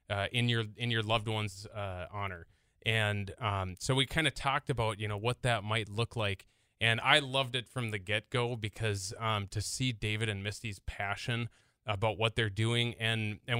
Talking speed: 200 wpm